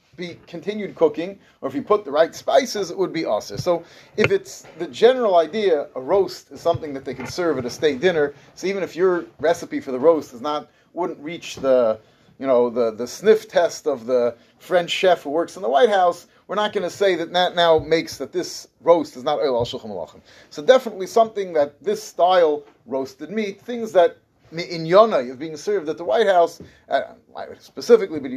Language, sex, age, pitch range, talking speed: English, male, 30-49, 140-200 Hz, 210 wpm